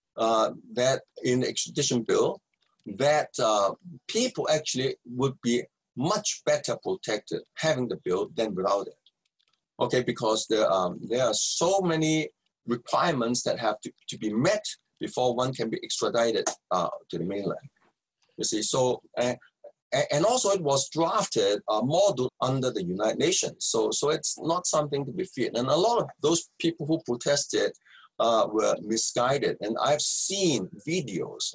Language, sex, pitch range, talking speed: English, male, 120-155 Hz, 160 wpm